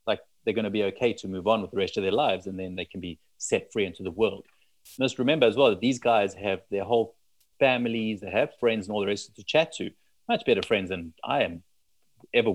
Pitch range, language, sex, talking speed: 90-110 Hz, English, male, 255 wpm